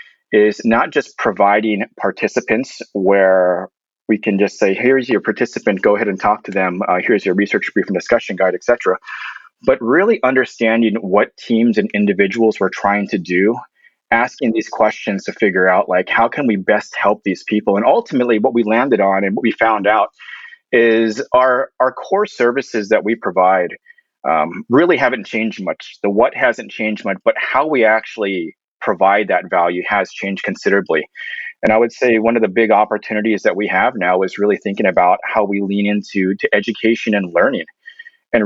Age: 30-49